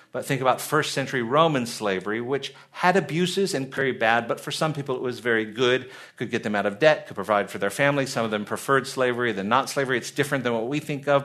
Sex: male